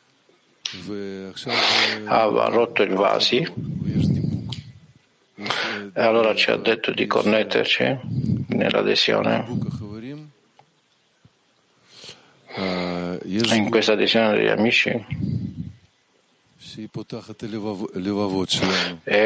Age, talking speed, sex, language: 50-69, 60 wpm, male, Italian